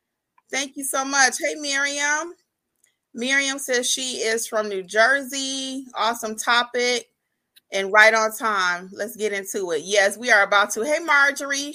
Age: 30-49